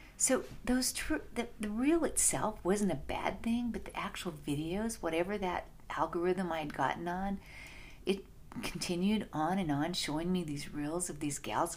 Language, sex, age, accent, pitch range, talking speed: English, female, 50-69, American, 170-225 Hz, 175 wpm